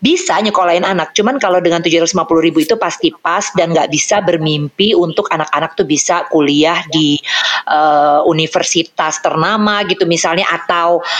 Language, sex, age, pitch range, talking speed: Indonesian, female, 30-49, 160-195 Hz, 145 wpm